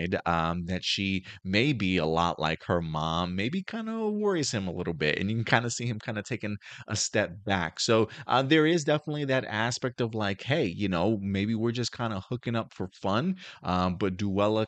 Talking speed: 225 wpm